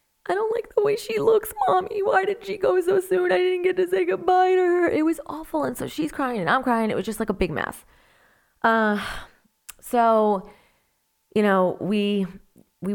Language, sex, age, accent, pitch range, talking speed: English, female, 30-49, American, 160-215 Hz, 210 wpm